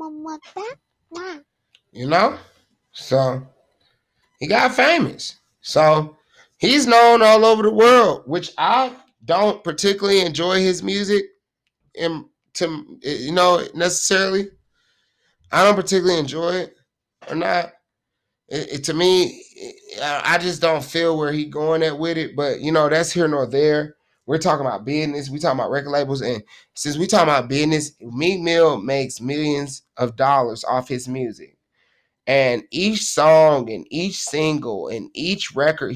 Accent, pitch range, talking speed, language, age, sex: American, 145-185 Hz, 140 wpm, English, 30-49, male